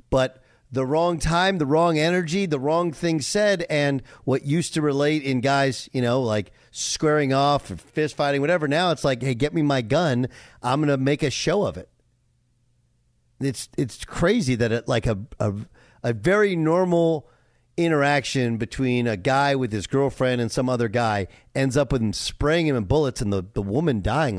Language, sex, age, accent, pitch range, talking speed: English, male, 40-59, American, 120-155 Hz, 190 wpm